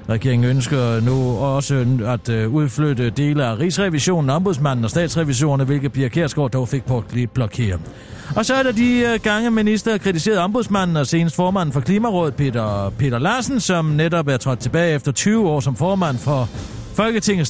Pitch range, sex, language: 125-190 Hz, male, Danish